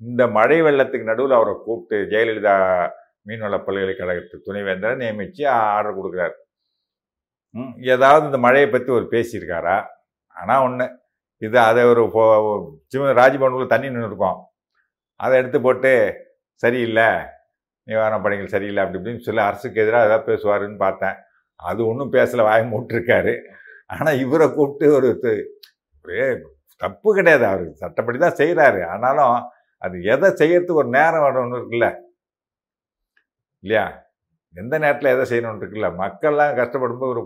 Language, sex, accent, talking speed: Tamil, male, native, 125 wpm